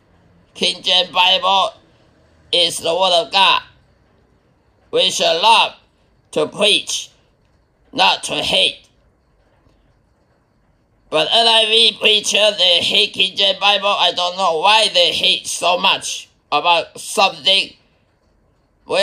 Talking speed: 110 wpm